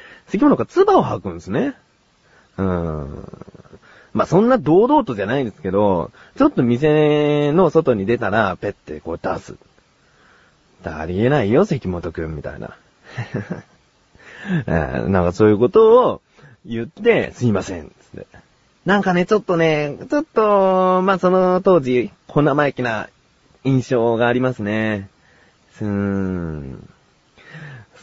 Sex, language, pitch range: male, Japanese, 100-160 Hz